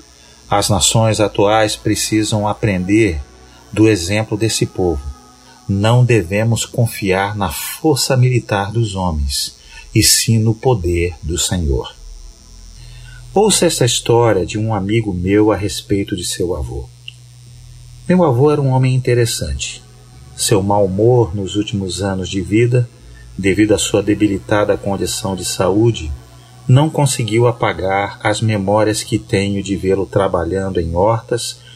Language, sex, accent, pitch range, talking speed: Portuguese, male, Brazilian, 100-125 Hz, 130 wpm